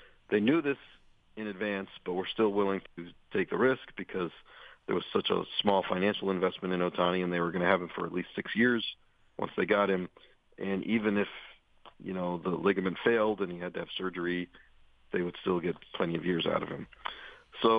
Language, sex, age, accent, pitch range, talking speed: English, male, 40-59, American, 90-105 Hz, 215 wpm